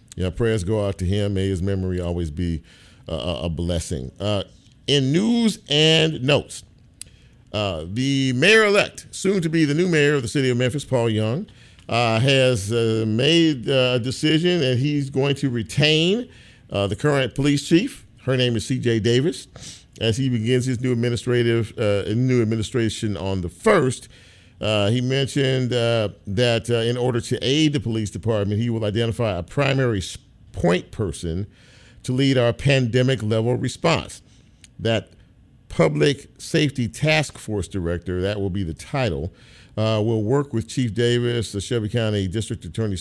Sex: male